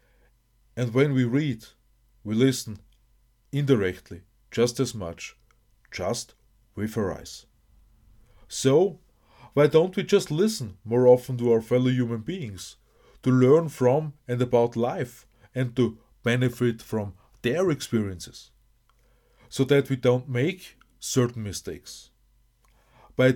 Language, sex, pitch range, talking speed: English, male, 115-130 Hz, 120 wpm